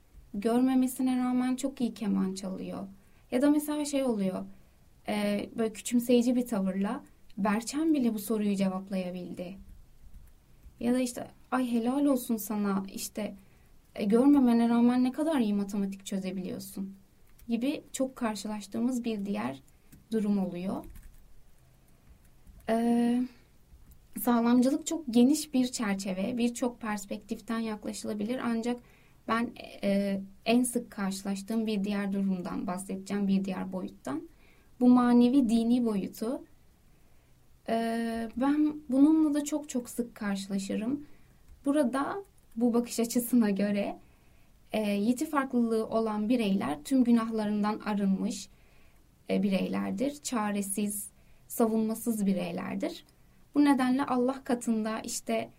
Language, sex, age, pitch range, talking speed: Turkish, female, 20-39, 205-250 Hz, 110 wpm